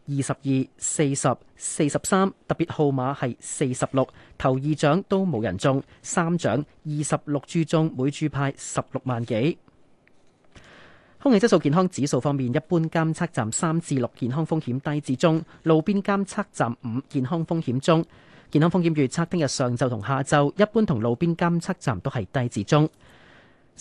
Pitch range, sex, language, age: 125-165 Hz, male, Chinese, 30-49